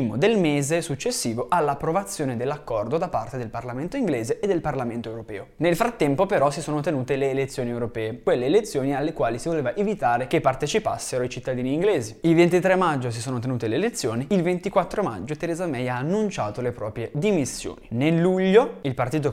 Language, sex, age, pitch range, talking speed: Italian, male, 20-39, 120-175 Hz, 175 wpm